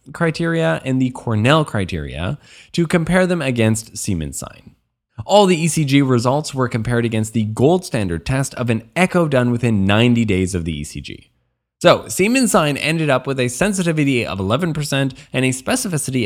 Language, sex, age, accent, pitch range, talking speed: English, male, 20-39, American, 110-160 Hz, 165 wpm